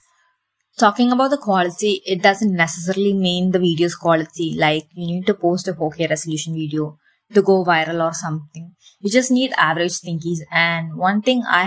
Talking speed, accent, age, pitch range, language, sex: 175 wpm, Indian, 20-39, 165-210 Hz, English, female